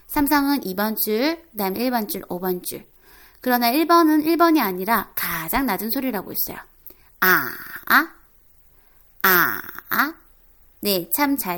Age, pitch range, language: 20-39, 205-300 Hz, Korean